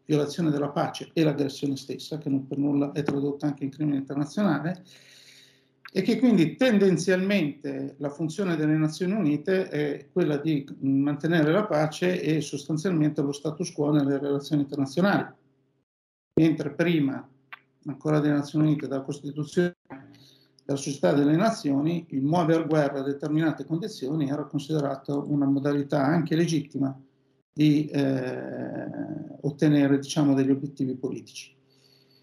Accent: native